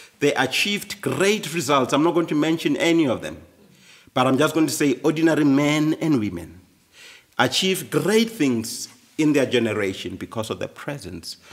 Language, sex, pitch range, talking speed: English, male, 110-150 Hz, 165 wpm